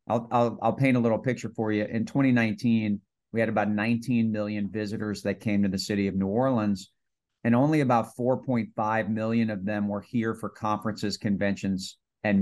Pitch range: 105-125 Hz